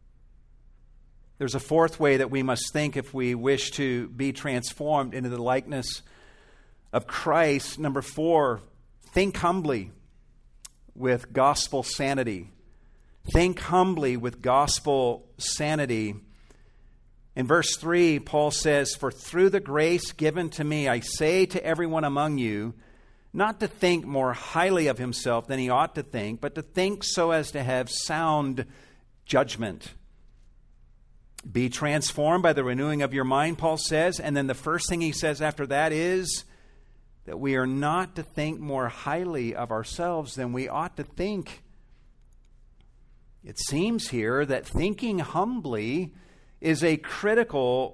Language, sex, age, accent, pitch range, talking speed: English, male, 50-69, American, 125-165 Hz, 145 wpm